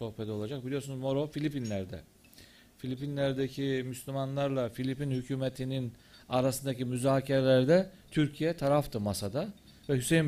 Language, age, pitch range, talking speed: Turkish, 40-59, 115-140 Hz, 90 wpm